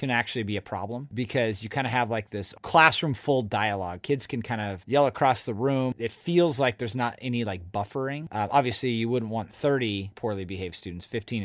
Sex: male